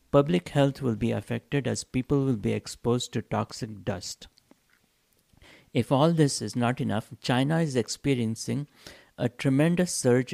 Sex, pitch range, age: male, 115-140 Hz, 60-79